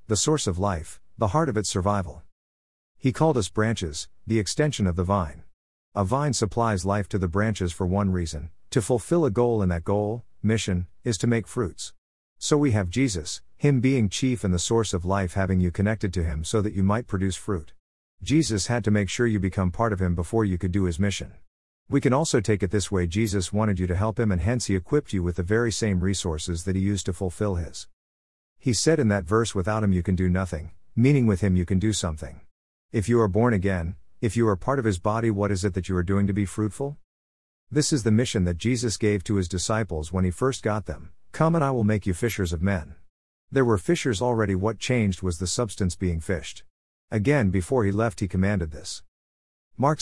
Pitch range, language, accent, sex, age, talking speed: 90-115 Hz, English, American, male, 50-69, 230 wpm